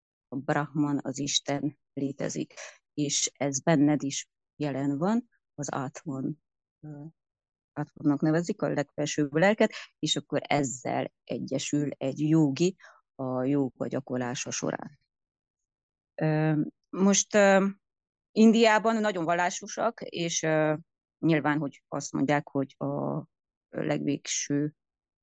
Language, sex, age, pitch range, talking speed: Hungarian, female, 30-49, 140-165 Hz, 95 wpm